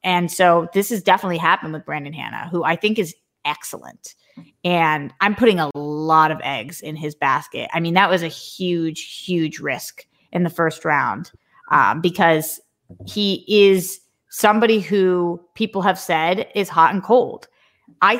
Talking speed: 165 wpm